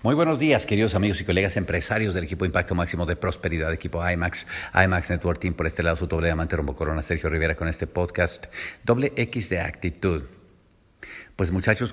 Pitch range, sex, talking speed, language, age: 90-100 Hz, male, 185 wpm, English, 50-69